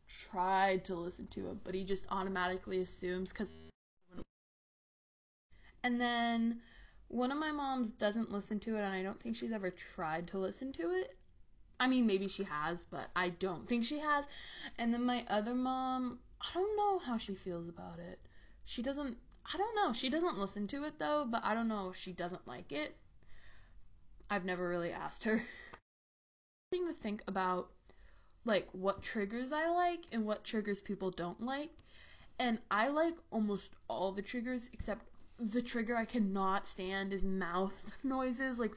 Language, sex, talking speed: English, female, 175 wpm